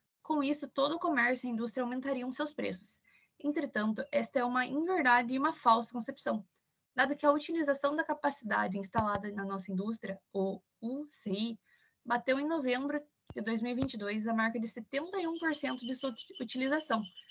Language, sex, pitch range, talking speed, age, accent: Portuguese, female, 230-285 Hz, 155 wpm, 10-29, Brazilian